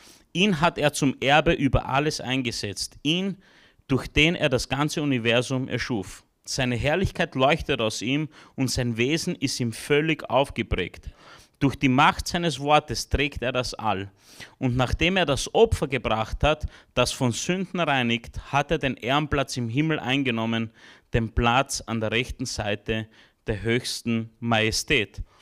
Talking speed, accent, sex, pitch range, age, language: 150 wpm, Austrian, male, 130-155 Hz, 30-49, German